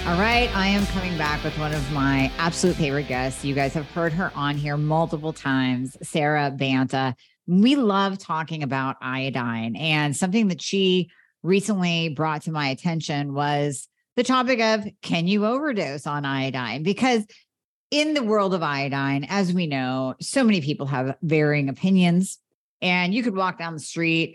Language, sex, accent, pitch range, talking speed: English, female, American, 145-190 Hz, 170 wpm